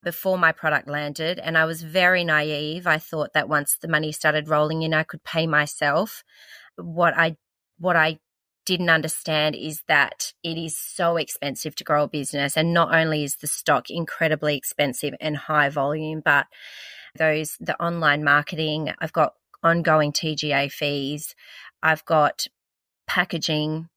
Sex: female